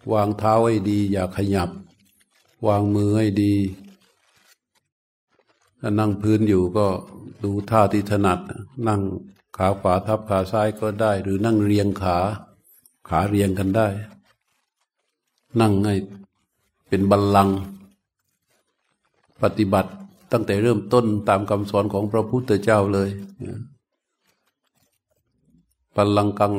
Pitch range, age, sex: 100-110 Hz, 60-79, male